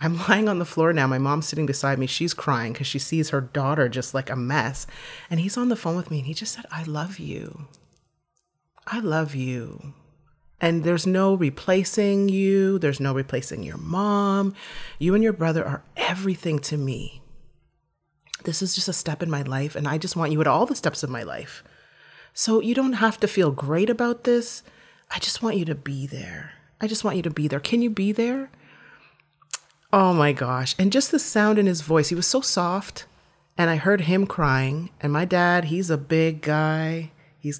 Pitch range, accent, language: 145-195 Hz, American, English